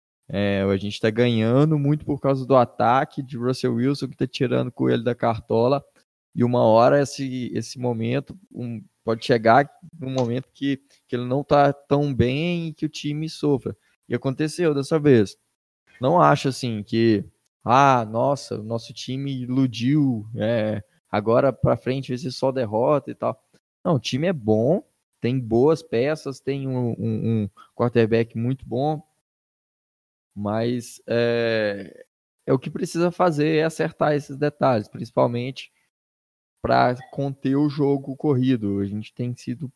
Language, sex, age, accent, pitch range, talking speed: Portuguese, male, 20-39, Brazilian, 110-135 Hz, 150 wpm